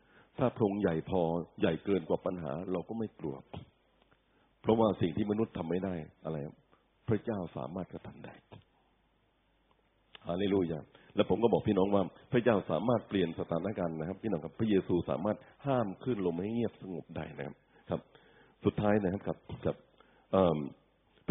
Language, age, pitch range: Thai, 60-79, 85-105 Hz